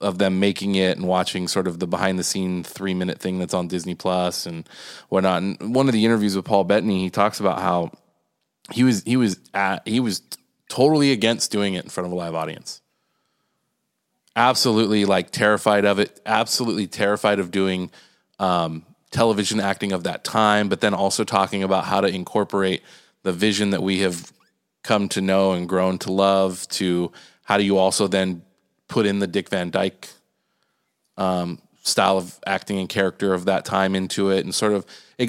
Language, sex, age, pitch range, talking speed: English, male, 20-39, 95-105 Hz, 190 wpm